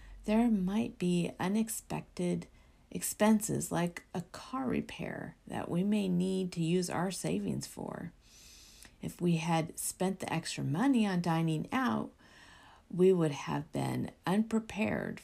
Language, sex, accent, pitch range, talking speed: English, female, American, 140-200 Hz, 130 wpm